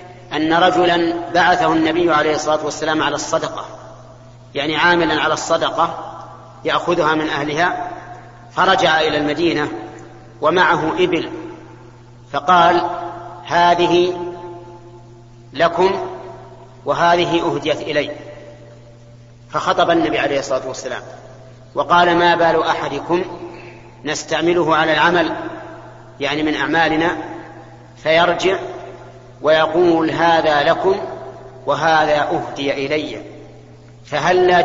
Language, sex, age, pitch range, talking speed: Arabic, male, 40-59, 130-170 Hz, 85 wpm